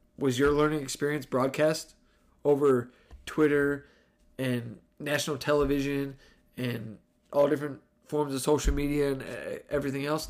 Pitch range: 140-200 Hz